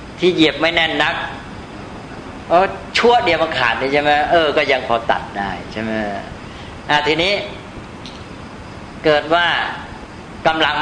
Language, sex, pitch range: Thai, female, 115-155 Hz